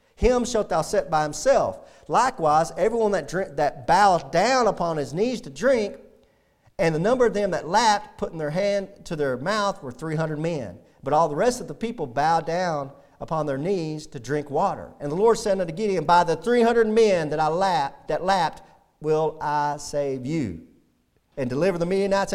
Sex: male